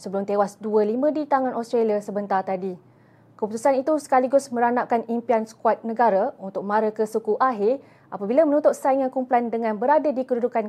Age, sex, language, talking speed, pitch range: 20-39, female, Malay, 155 wpm, 225-270 Hz